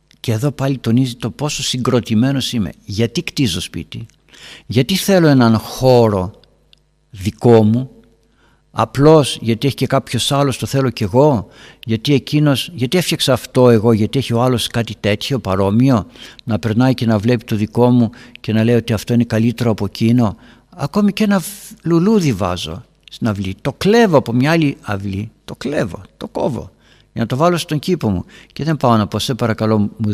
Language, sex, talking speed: Greek, male, 175 wpm